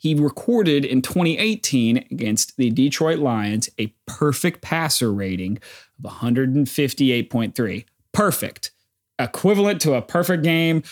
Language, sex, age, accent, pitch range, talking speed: English, male, 30-49, American, 115-165 Hz, 110 wpm